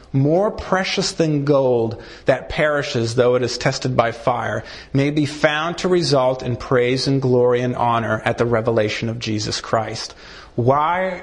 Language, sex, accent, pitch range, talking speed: English, male, American, 120-170 Hz, 160 wpm